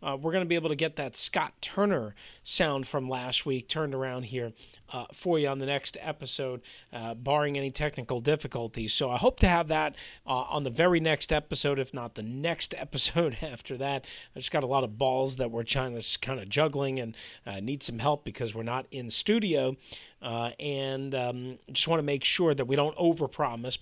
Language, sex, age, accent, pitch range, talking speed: English, male, 40-59, American, 125-170 Hz, 215 wpm